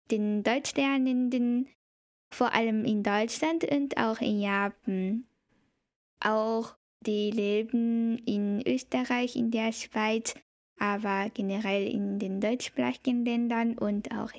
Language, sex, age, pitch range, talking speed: German, female, 10-29, 210-250 Hz, 110 wpm